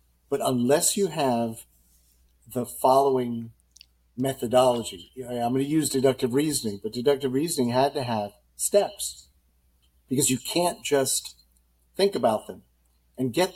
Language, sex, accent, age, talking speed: English, male, American, 50-69, 130 wpm